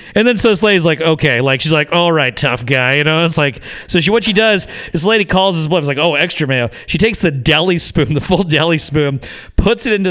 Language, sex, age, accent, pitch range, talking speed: English, male, 40-59, American, 140-180 Hz, 255 wpm